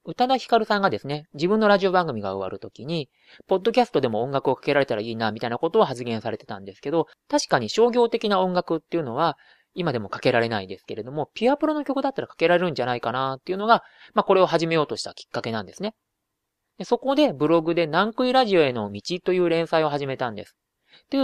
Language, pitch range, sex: Japanese, 130-215 Hz, male